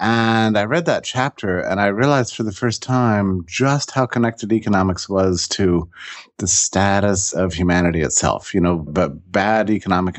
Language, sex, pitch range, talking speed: English, male, 85-105 Hz, 165 wpm